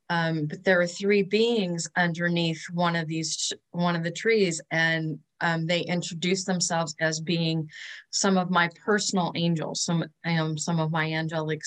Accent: American